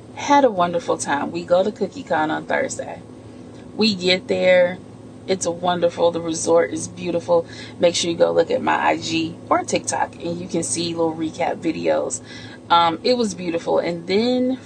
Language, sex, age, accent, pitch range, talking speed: English, female, 30-49, American, 170-210 Hz, 180 wpm